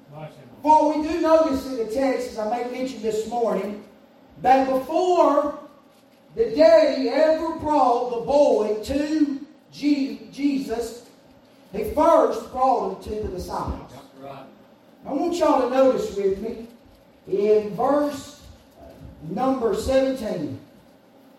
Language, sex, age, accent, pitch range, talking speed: English, male, 40-59, American, 230-280 Hz, 120 wpm